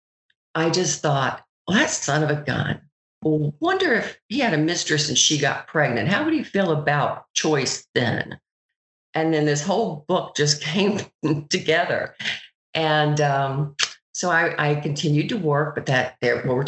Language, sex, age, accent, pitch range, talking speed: English, female, 50-69, American, 130-155 Hz, 175 wpm